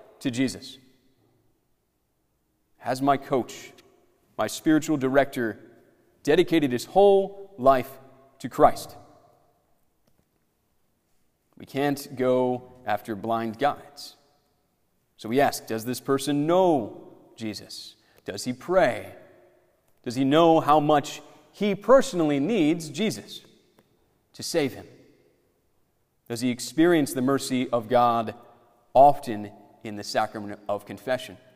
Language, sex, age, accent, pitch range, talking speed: English, male, 30-49, American, 120-150 Hz, 105 wpm